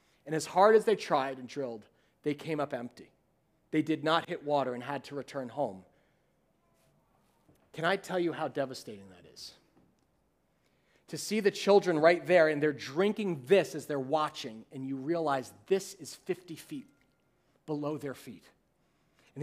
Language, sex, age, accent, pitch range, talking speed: English, male, 40-59, American, 150-195 Hz, 165 wpm